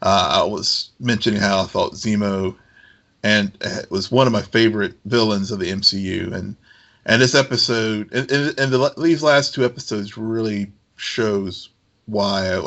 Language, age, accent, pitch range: English, 50-69, American, 100-120 Hz